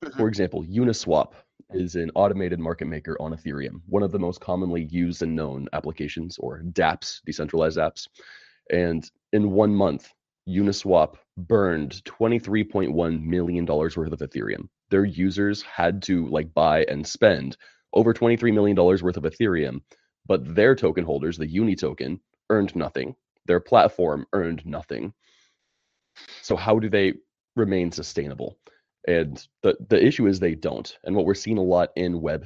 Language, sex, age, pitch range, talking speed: English, male, 30-49, 80-100 Hz, 150 wpm